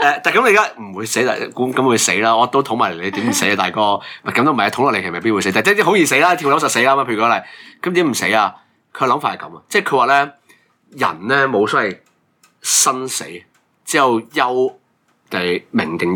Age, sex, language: 30-49, male, Chinese